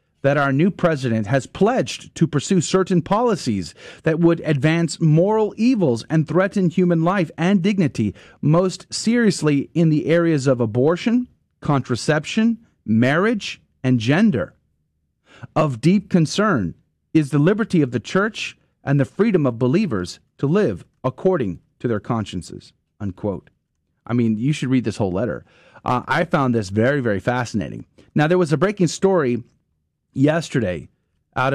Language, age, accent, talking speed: English, 30-49, American, 145 wpm